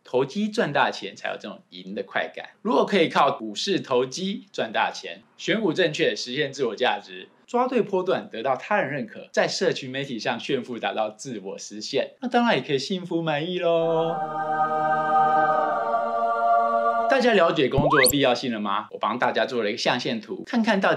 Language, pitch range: Chinese, 125-195 Hz